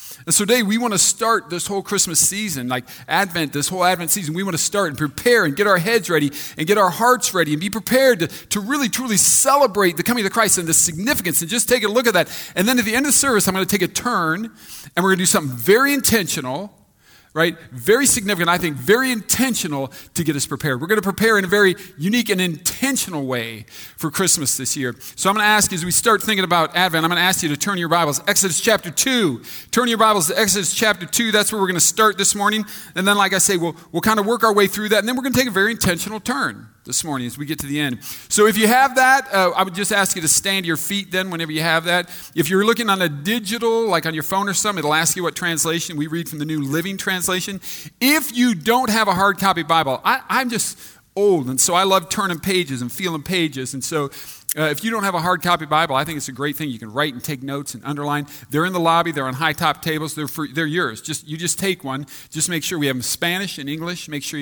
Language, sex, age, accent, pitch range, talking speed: English, male, 40-59, American, 155-210 Hz, 275 wpm